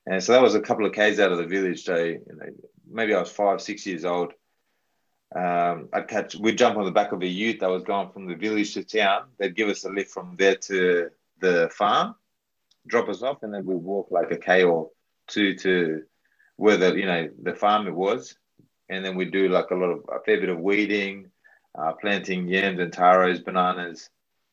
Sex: male